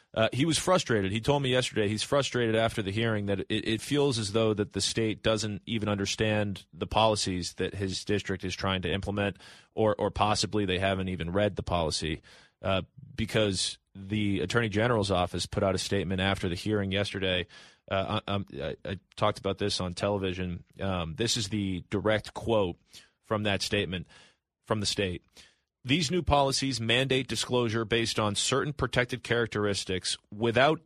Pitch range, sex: 95-115 Hz, male